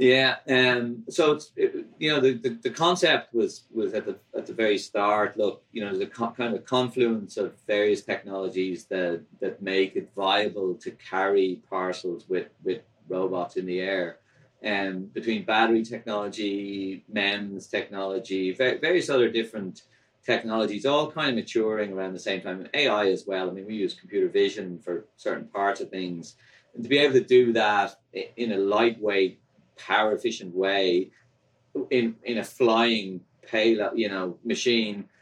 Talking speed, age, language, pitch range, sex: 175 wpm, 30-49, English, 95-130 Hz, male